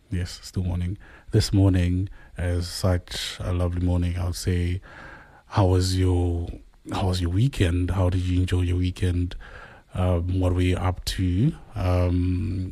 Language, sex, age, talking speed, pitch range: English, male, 30-49, 150 wpm, 90-100 Hz